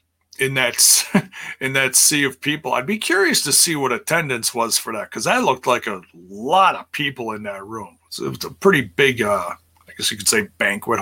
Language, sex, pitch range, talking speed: English, male, 85-135 Hz, 225 wpm